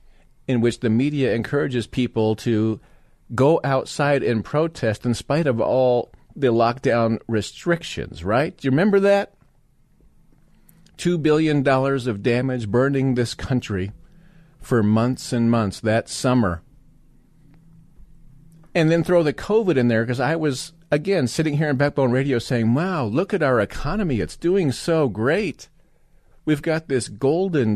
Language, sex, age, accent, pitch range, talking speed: English, male, 40-59, American, 125-165 Hz, 145 wpm